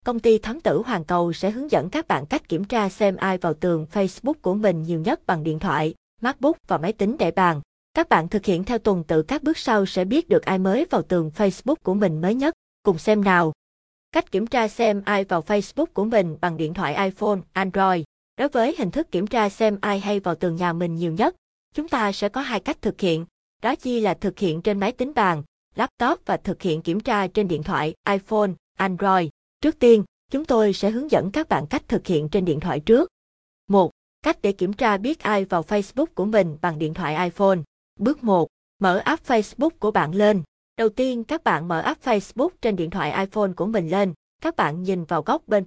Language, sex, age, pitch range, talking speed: Vietnamese, female, 20-39, 175-230 Hz, 225 wpm